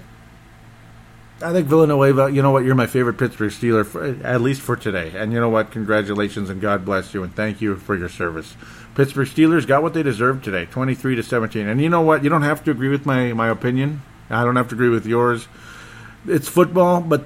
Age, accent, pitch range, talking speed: 40-59, American, 110-140 Hz, 220 wpm